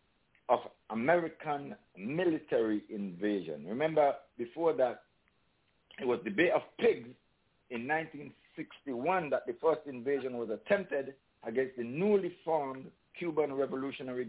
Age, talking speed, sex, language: 60-79, 115 wpm, male, English